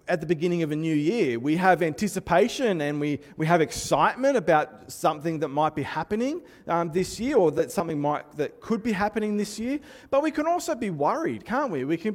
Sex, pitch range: male, 140-205 Hz